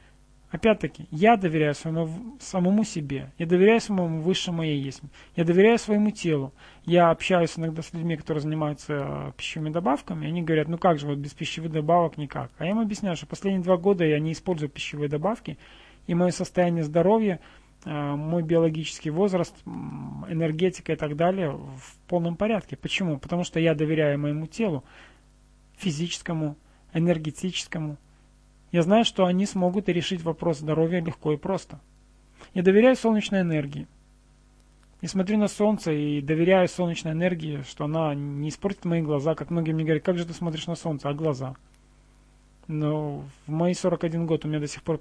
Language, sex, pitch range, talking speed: Russian, male, 150-180 Hz, 165 wpm